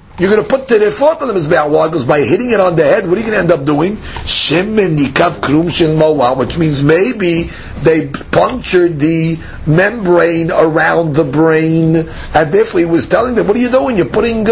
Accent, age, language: American, 50-69, English